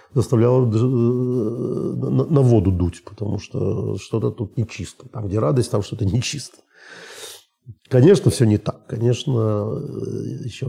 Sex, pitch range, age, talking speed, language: male, 110-140 Hz, 40-59, 125 wpm, Russian